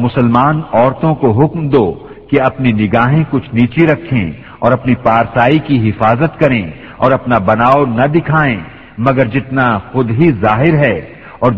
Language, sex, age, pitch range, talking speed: Urdu, male, 50-69, 120-145 Hz, 150 wpm